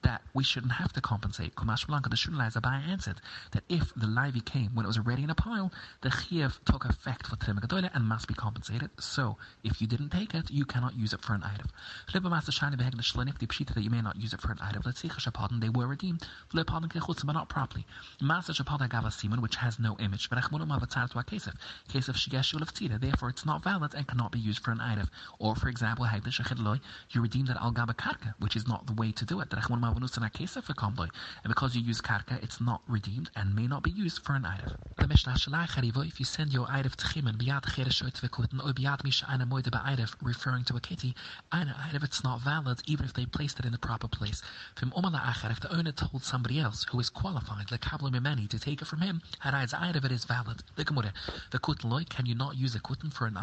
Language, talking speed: English, 205 wpm